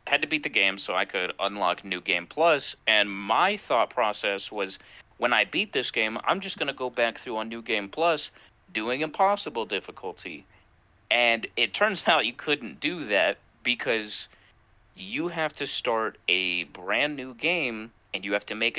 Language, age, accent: English, 30-49, American